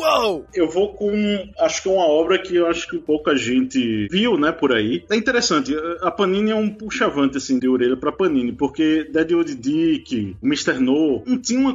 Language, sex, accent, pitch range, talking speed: Portuguese, male, Brazilian, 130-210 Hz, 210 wpm